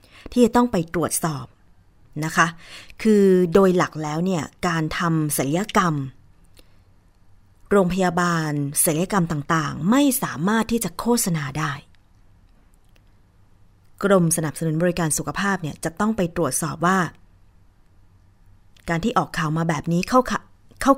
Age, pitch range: 30-49, 125-195 Hz